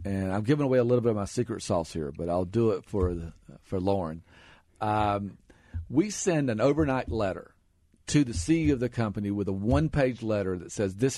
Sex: male